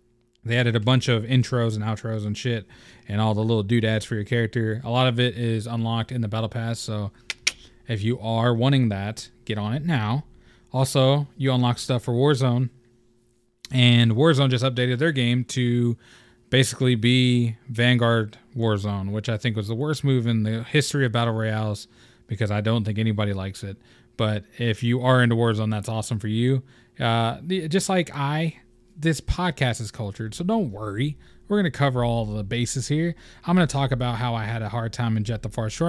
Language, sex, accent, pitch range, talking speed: English, male, American, 115-130 Hz, 200 wpm